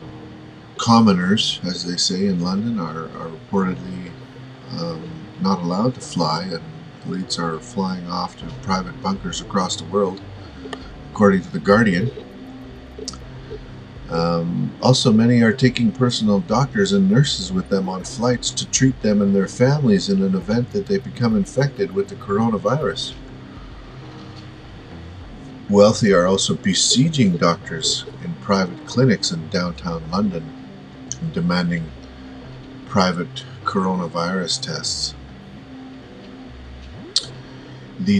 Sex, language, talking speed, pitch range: male, English, 115 wpm, 85-130 Hz